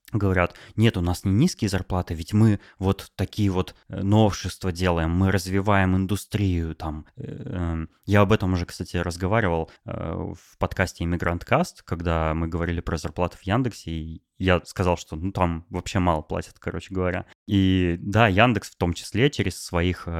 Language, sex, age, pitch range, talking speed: Russian, male, 20-39, 90-115 Hz, 160 wpm